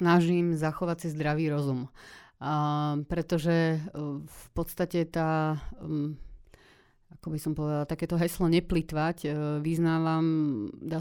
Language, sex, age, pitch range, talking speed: Slovak, female, 30-49, 155-170 Hz, 105 wpm